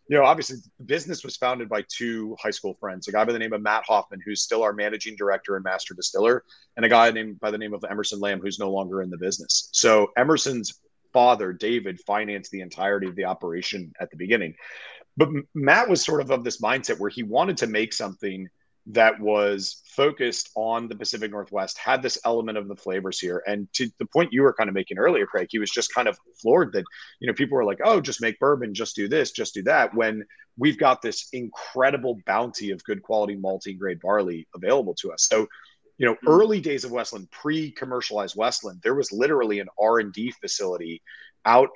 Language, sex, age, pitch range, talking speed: English, male, 30-49, 100-120 Hz, 215 wpm